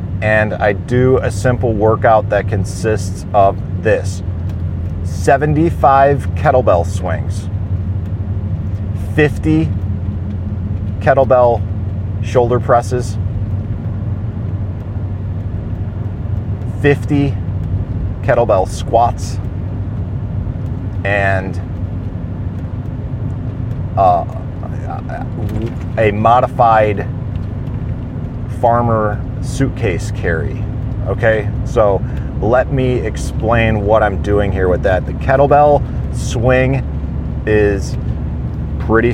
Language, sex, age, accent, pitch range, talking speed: English, male, 40-59, American, 95-115 Hz, 65 wpm